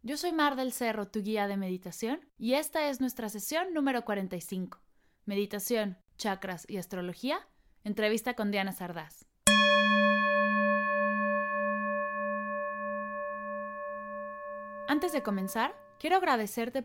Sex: female